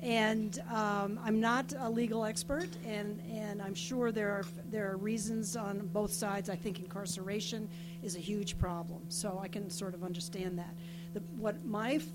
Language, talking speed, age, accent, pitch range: English, 185 wpm, 50-69, American, 170-215 Hz